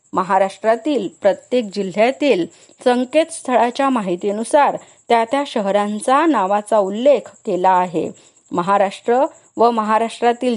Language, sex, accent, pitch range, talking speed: Marathi, female, native, 195-250 Hz, 85 wpm